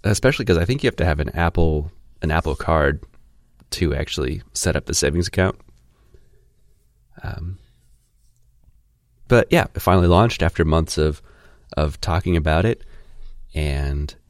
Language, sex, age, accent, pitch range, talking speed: English, male, 30-49, American, 70-95 Hz, 145 wpm